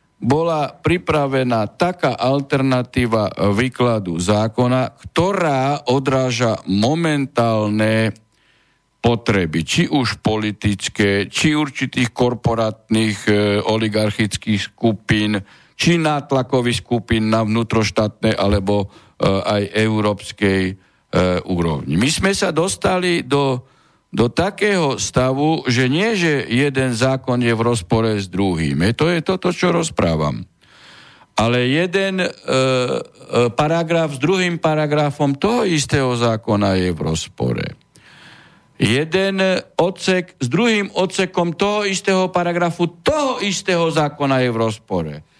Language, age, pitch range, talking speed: Slovak, 50-69, 110-175 Hz, 105 wpm